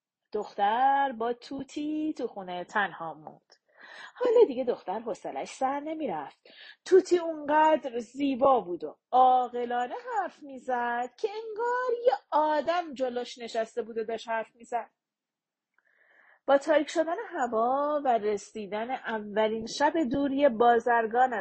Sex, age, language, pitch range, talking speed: female, 30-49, Persian, 225-330 Hz, 120 wpm